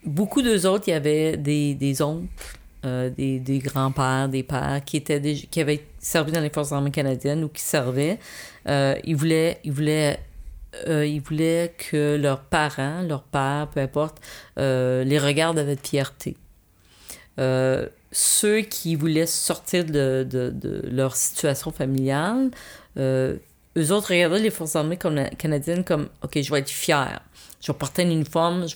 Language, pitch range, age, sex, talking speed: French, 140-175 Hz, 40-59, female, 165 wpm